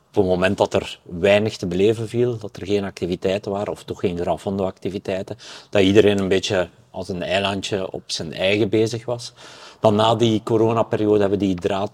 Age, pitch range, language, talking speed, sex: 50-69, 90-110 Hz, Dutch, 190 wpm, male